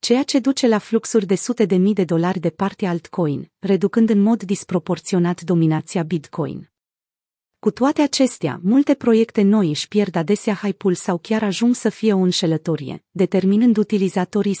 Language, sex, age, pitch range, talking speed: Romanian, female, 30-49, 175-220 Hz, 160 wpm